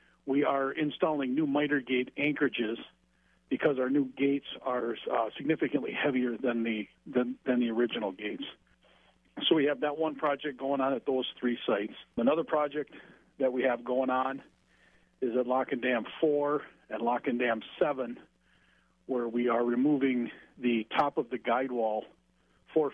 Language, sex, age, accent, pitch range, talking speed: English, male, 50-69, American, 125-145 Hz, 165 wpm